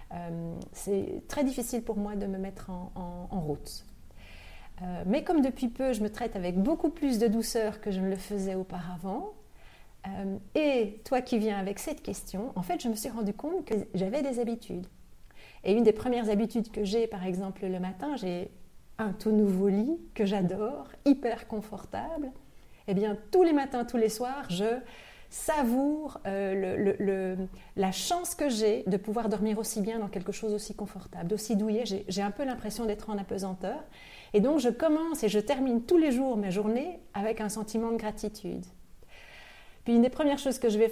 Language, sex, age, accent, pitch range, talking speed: French, female, 40-59, French, 195-240 Hz, 195 wpm